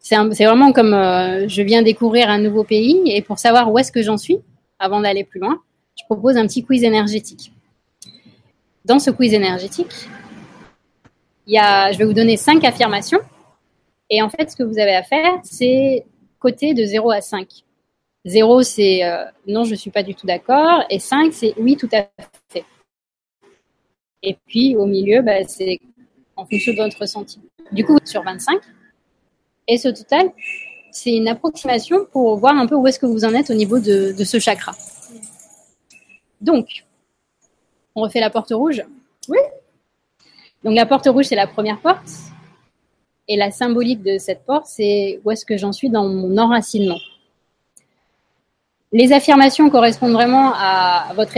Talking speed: 175 wpm